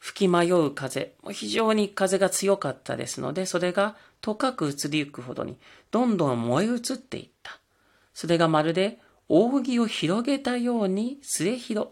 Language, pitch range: Japanese, 150-210 Hz